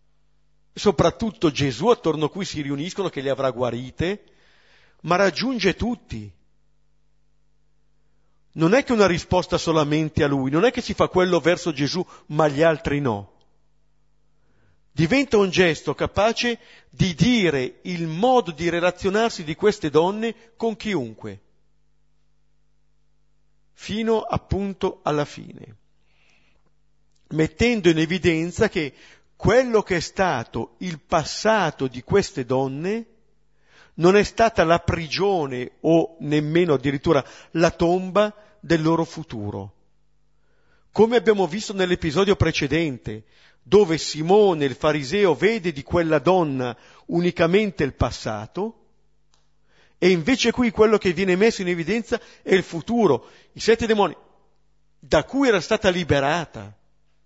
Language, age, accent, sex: Italian, 50-69, native, male